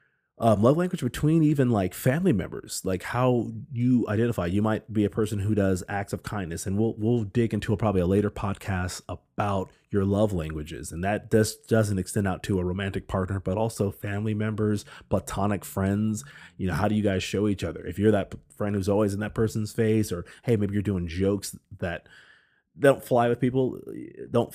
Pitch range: 95-115 Hz